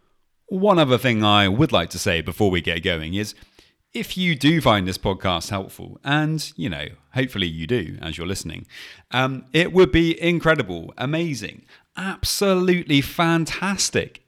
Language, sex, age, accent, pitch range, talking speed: English, male, 30-49, British, 95-130 Hz, 155 wpm